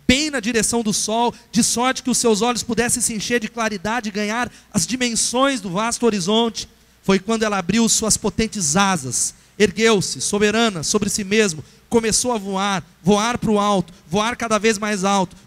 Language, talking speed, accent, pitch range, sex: Portuguese, 180 wpm, Brazilian, 200-240 Hz, male